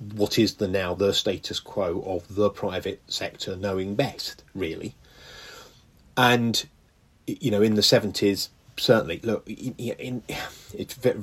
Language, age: English, 30-49